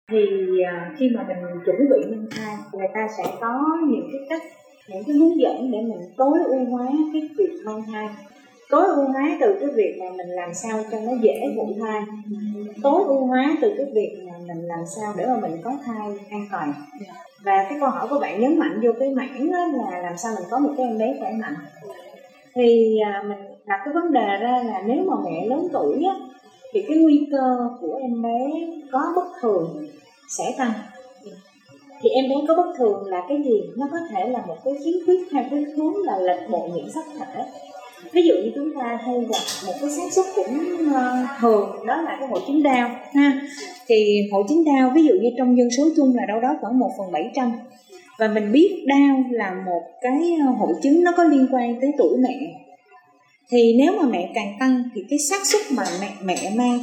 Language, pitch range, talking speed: Vietnamese, 210-285 Hz, 215 wpm